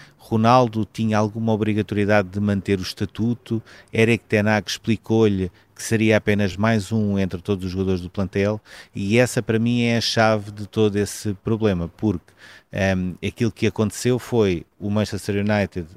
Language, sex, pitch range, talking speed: Portuguese, male, 100-115 Hz, 155 wpm